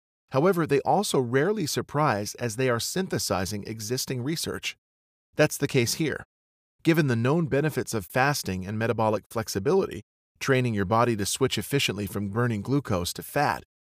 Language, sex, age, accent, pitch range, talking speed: English, male, 40-59, American, 100-140 Hz, 150 wpm